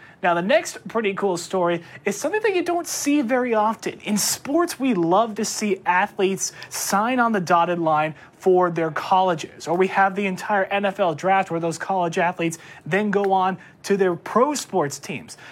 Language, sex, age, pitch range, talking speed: English, male, 30-49, 180-245 Hz, 185 wpm